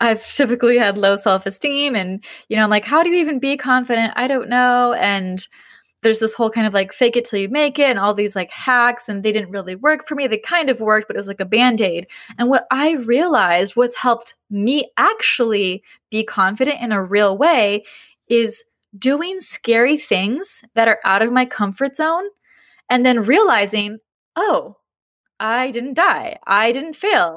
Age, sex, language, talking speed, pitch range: 20-39, female, English, 195 wpm, 215-275 Hz